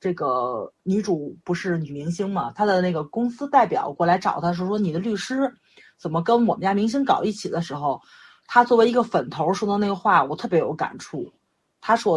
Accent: native